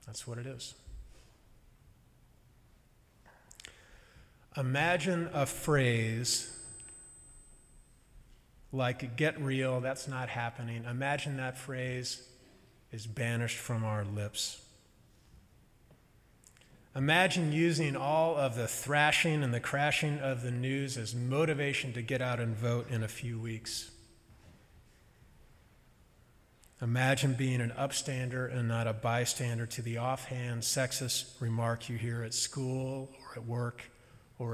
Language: English